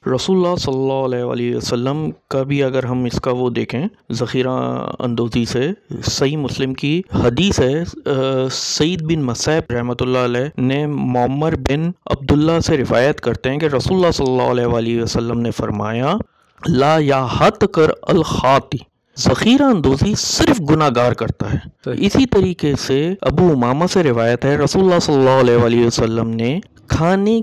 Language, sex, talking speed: Urdu, male, 160 wpm